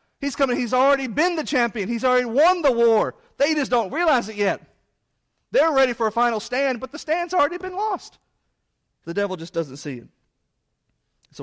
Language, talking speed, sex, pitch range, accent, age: English, 195 wpm, male, 130-180 Hz, American, 40-59